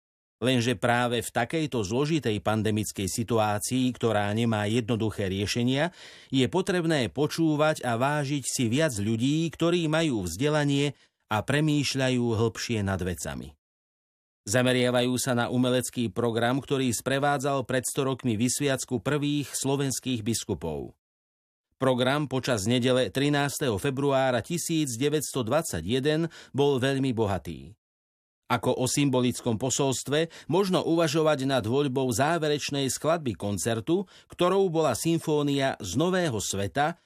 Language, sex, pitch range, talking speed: Slovak, male, 115-150 Hz, 110 wpm